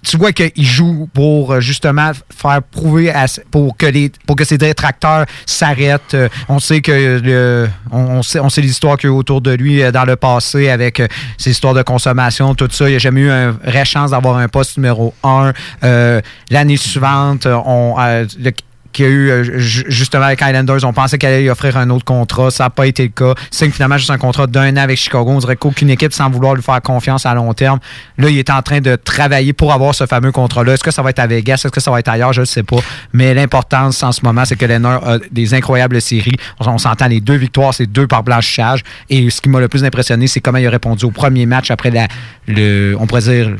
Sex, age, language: male, 30-49, French